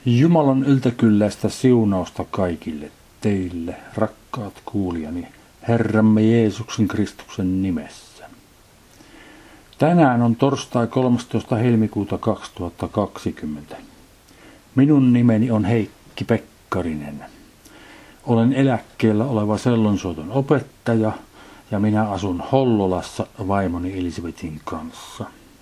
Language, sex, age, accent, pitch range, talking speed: Finnish, male, 50-69, native, 100-125 Hz, 80 wpm